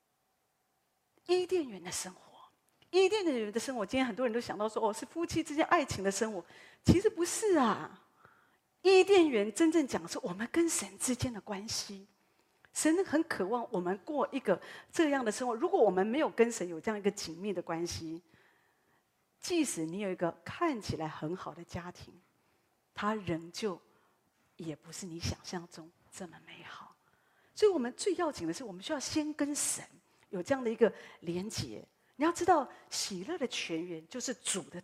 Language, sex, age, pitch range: Chinese, female, 40-59, 185-305 Hz